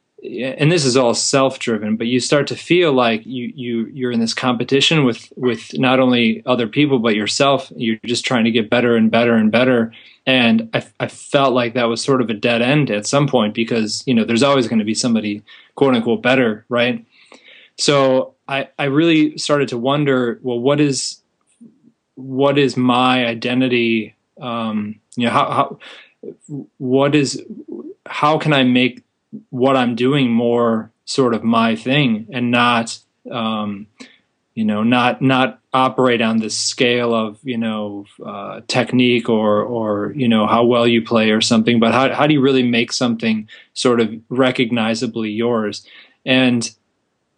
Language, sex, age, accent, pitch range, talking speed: English, male, 20-39, American, 115-130 Hz, 170 wpm